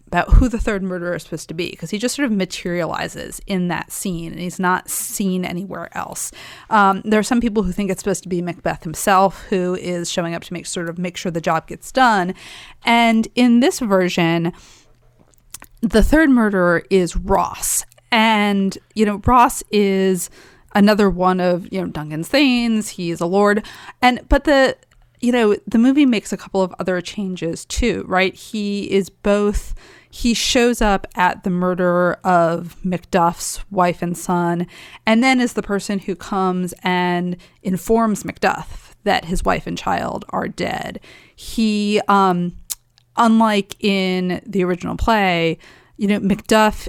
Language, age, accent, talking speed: English, 30-49, American, 170 wpm